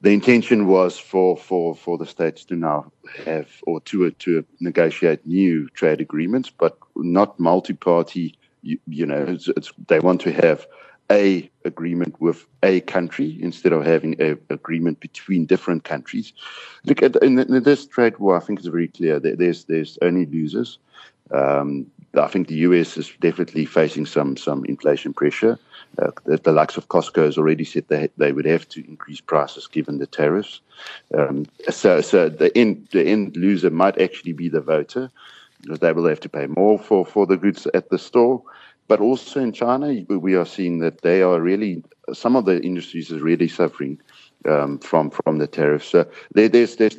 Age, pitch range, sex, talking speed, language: 50-69, 80-100 Hz, male, 190 wpm, English